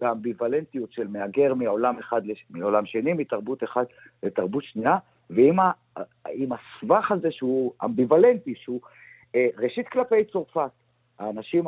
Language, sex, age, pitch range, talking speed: Hebrew, male, 50-69, 120-190 Hz, 120 wpm